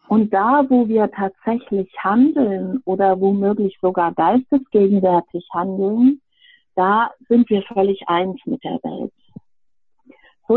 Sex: female